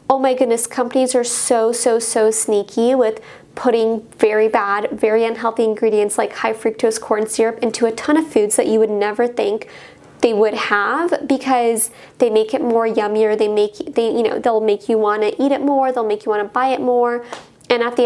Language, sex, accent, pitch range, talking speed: English, female, American, 220-250 Hz, 215 wpm